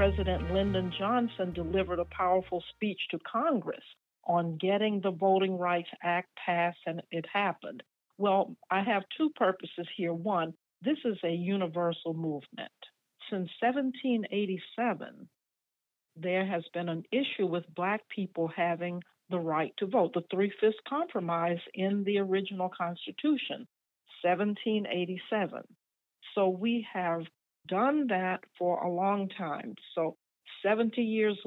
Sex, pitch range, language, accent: female, 175-210 Hz, English, American